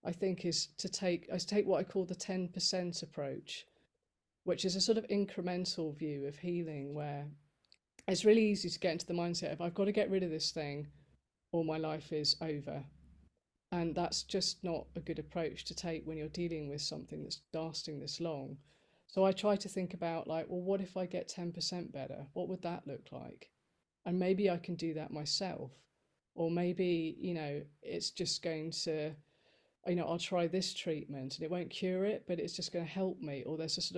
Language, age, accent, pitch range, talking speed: English, 30-49, British, 155-185 Hz, 210 wpm